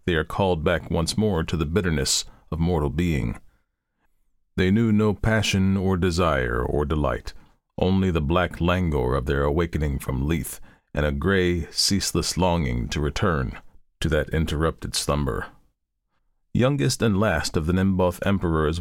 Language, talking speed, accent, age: English, 150 wpm, American, 40-59